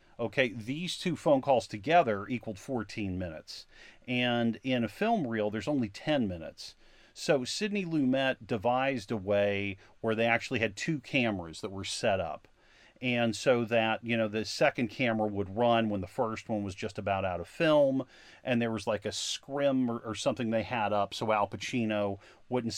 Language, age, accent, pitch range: English, 40-59, American, 105-130 Hz